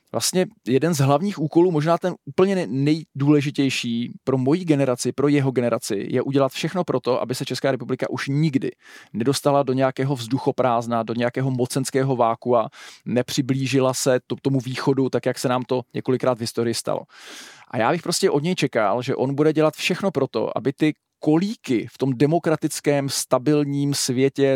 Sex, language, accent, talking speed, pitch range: male, Czech, native, 165 wpm, 130-150 Hz